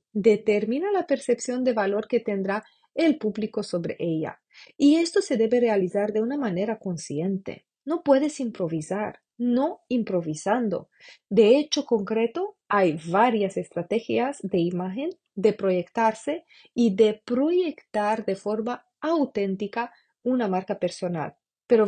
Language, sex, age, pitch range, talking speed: Spanish, female, 30-49, 190-255 Hz, 125 wpm